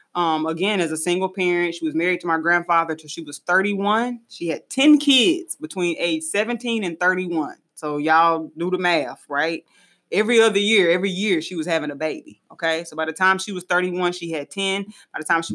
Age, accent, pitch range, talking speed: 20-39, American, 160-205 Hz, 215 wpm